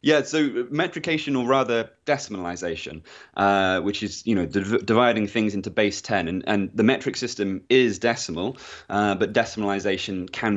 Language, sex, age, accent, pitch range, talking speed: English, male, 20-39, British, 100-115 Hz, 160 wpm